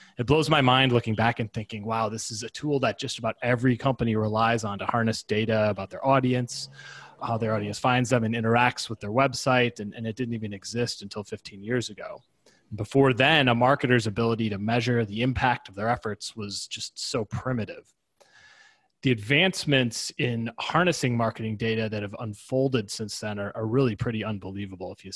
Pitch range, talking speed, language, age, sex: 105-125 Hz, 190 wpm, English, 20-39, male